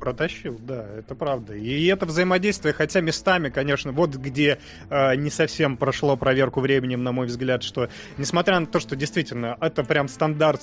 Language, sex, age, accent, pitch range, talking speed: Russian, male, 20-39, native, 125-150 Hz, 170 wpm